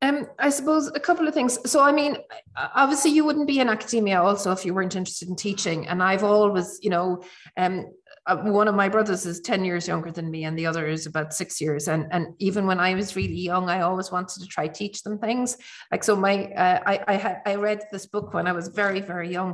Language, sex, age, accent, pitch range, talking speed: English, female, 30-49, Irish, 185-225 Hz, 240 wpm